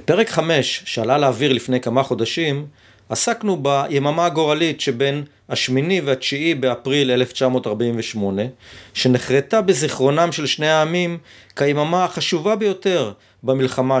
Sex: male